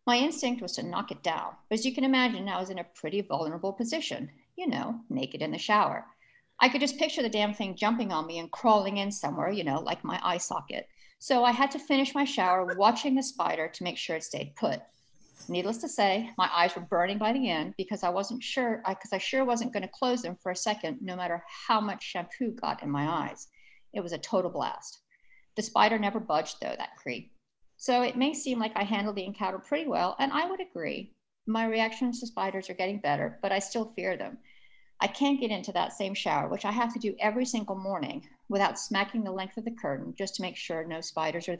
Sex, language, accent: female, English, American